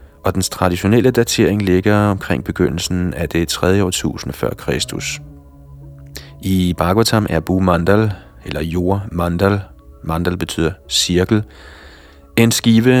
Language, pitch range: Danish, 80-100 Hz